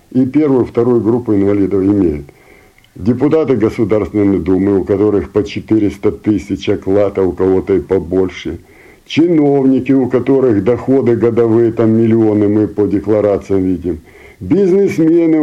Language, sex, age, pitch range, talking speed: Russian, male, 50-69, 100-140 Hz, 120 wpm